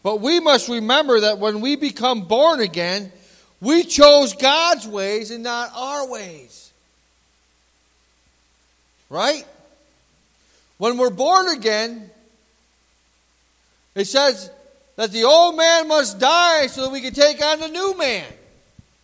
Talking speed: 125 wpm